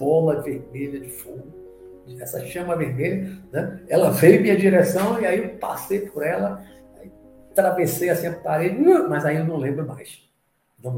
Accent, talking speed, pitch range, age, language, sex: Brazilian, 165 wpm, 140-195 Hz, 60-79, Portuguese, male